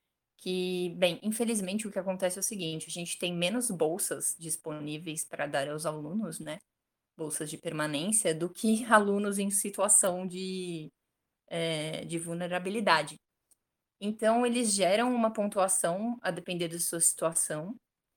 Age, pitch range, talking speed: 20-39, 170-215 Hz, 135 wpm